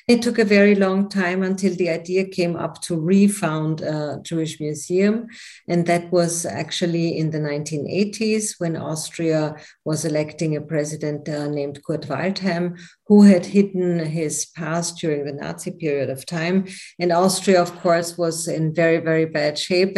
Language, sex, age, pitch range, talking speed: English, female, 50-69, 160-190 Hz, 165 wpm